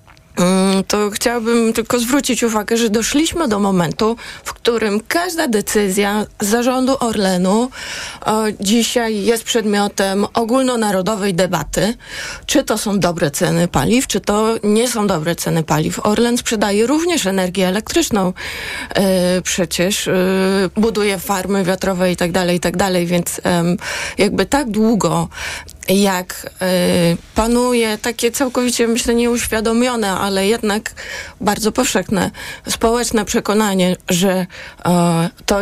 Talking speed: 110 wpm